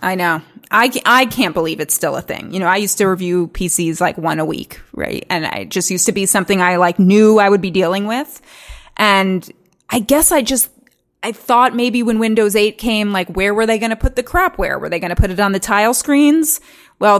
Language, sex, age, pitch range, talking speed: English, female, 20-39, 180-230 Hz, 240 wpm